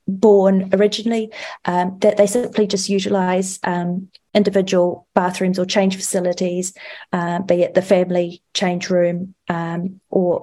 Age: 30-49